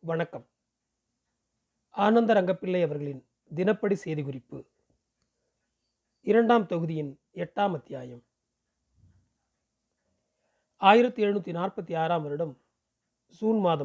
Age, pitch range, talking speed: 40-59, 170-215 Hz, 70 wpm